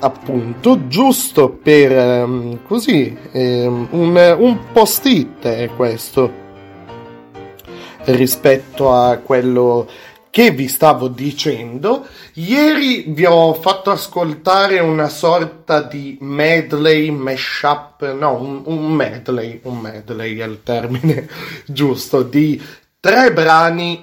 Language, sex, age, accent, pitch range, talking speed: Italian, male, 30-49, native, 125-160 Hz, 100 wpm